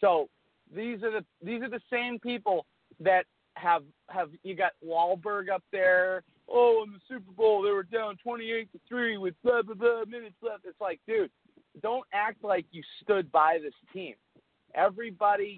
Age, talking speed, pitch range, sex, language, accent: 40-59, 175 wpm, 150-220 Hz, male, English, American